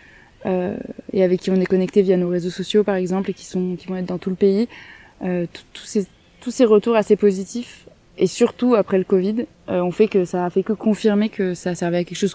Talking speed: 245 wpm